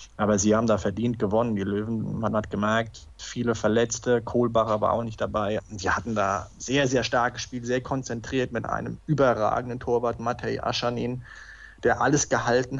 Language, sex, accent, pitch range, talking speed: German, male, German, 115-130 Hz, 175 wpm